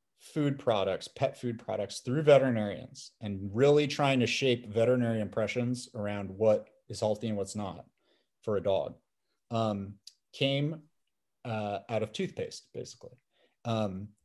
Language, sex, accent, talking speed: English, male, American, 135 wpm